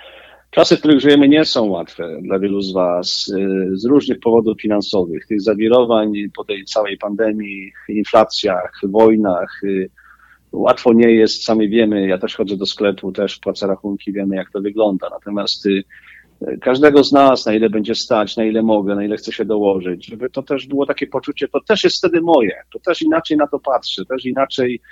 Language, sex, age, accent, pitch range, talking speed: Polish, male, 40-59, native, 105-140 Hz, 180 wpm